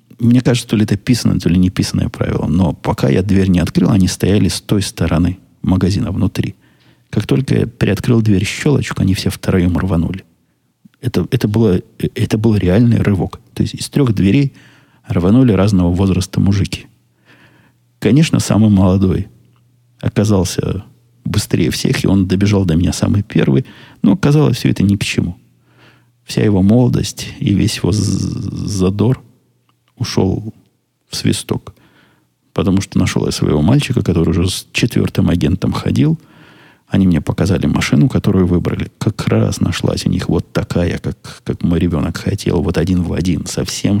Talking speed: 155 wpm